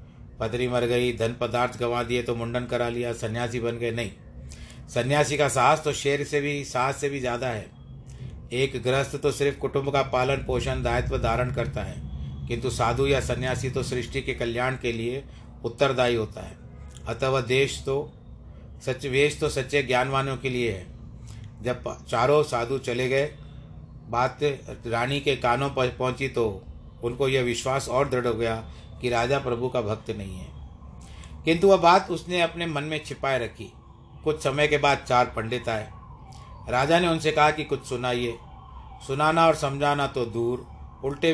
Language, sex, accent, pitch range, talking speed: Hindi, male, native, 115-140 Hz, 170 wpm